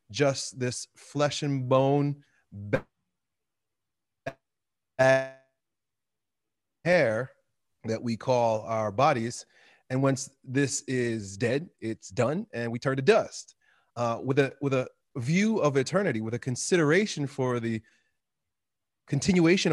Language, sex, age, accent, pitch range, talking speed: English, male, 30-49, American, 110-145 Hz, 110 wpm